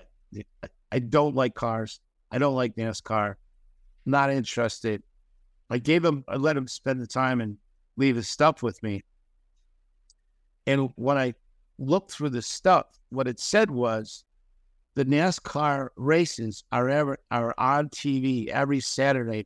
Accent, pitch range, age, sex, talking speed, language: American, 105-135 Hz, 50-69, male, 140 wpm, English